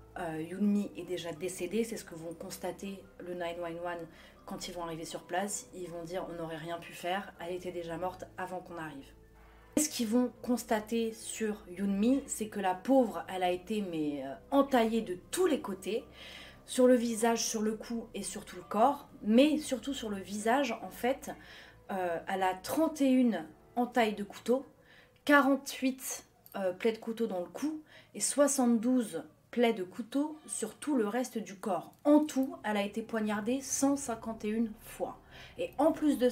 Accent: French